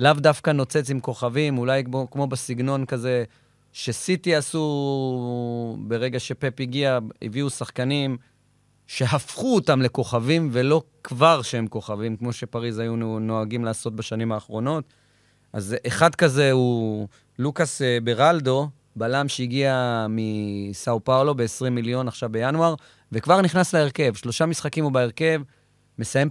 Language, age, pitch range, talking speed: Hebrew, 30-49, 120-145 Hz, 120 wpm